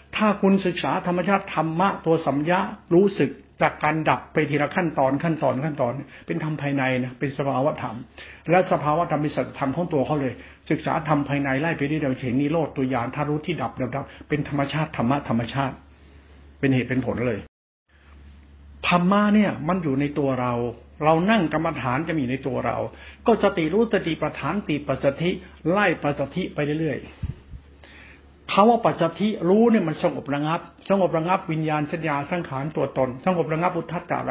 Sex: male